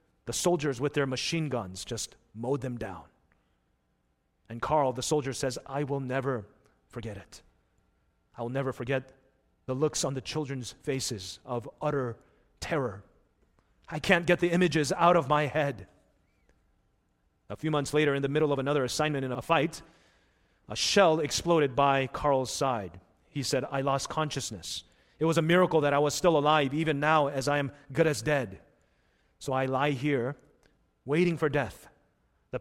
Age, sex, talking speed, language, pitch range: 40-59, male, 165 wpm, English, 135-175 Hz